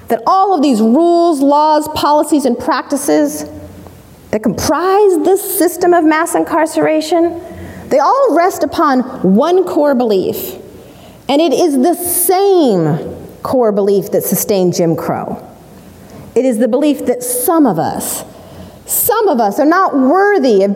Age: 40-59